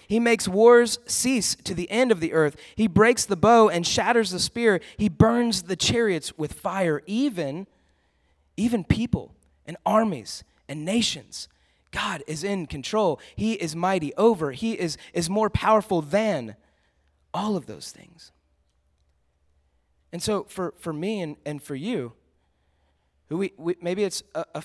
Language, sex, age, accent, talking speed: English, male, 30-49, American, 160 wpm